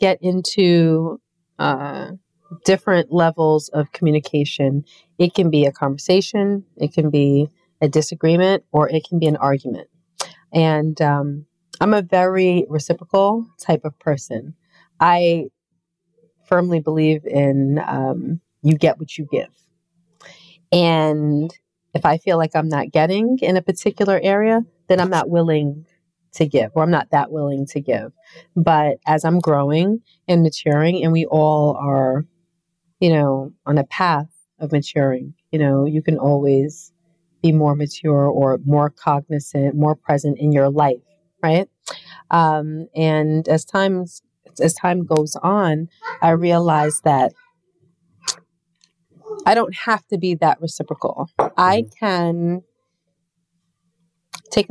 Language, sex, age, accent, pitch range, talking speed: English, female, 30-49, American, 150-175 Hz, 135 wpm